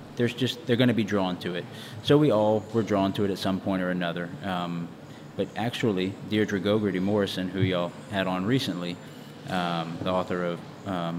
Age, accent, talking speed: 30-49, American, 200 wpm